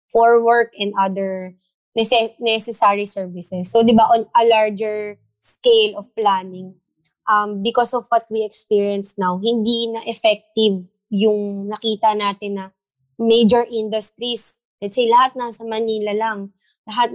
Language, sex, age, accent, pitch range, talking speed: Filipino, female, 20-39, native, 195-235 Hz, 135 wpm